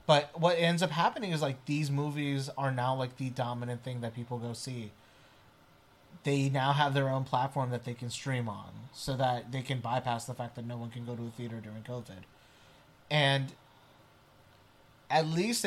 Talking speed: 190 wpm